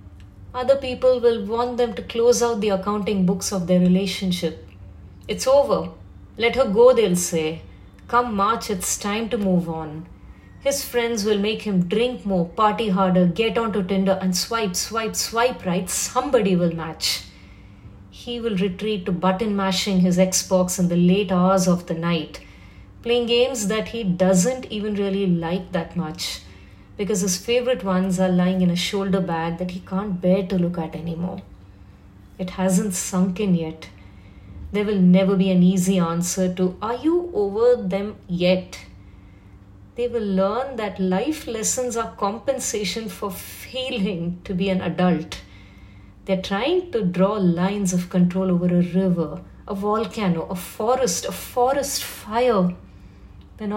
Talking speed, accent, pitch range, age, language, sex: 155 wpm, Indian, 170-215 Hz, 30-49, English, female